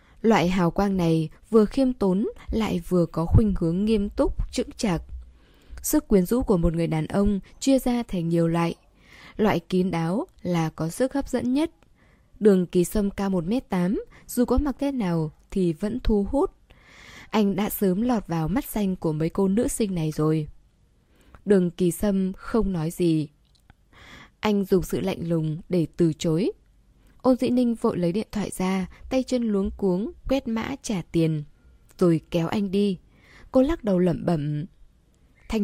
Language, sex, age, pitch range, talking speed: Vietnamese, female, 10-29, 170-230 Hz, 180 wpm